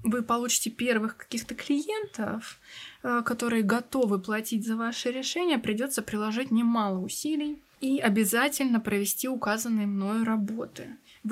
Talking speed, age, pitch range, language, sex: 115 wpm, 20-39, 210-255 Hz, Russian, female